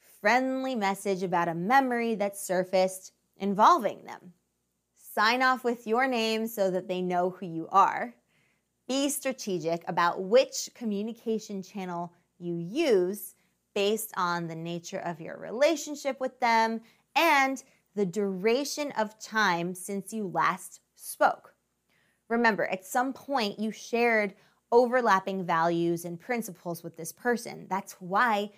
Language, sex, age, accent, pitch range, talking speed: English, female, 20-39, American, 180-235 Hz, 130 wpm